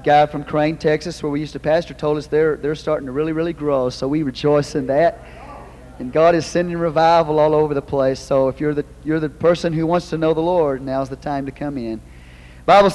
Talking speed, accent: 240 wpm, American